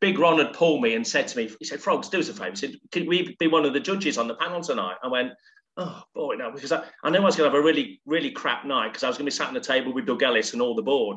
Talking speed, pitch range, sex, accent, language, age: 350 wpm, 130-200 Hz, male, British, English, 40-59